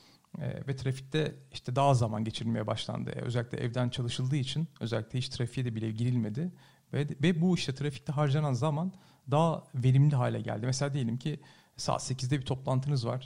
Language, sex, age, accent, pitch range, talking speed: Turkish, male, 40-59, native, 125-150 Hz, 175 wpm